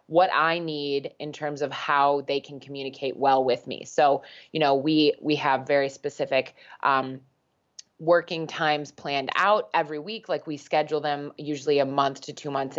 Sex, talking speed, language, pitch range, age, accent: female, 180 wpm, English, 140-165 Hz, 20-39, American